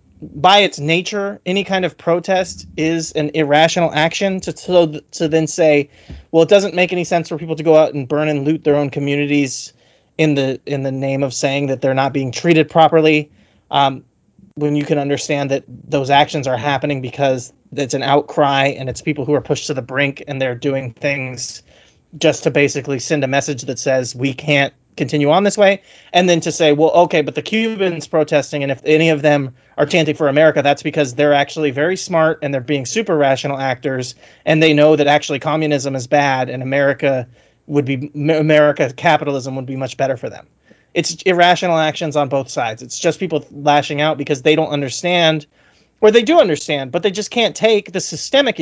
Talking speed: 205 wpm